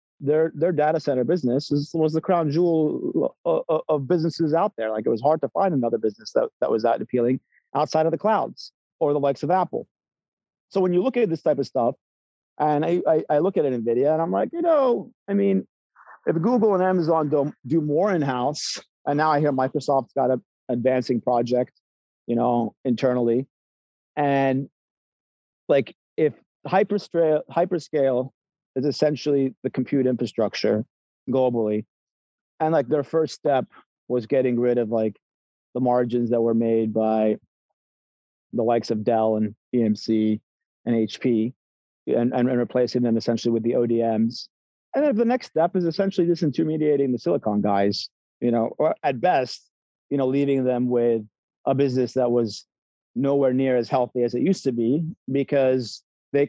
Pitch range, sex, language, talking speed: 120-155 Hz, male, English, 175 wpm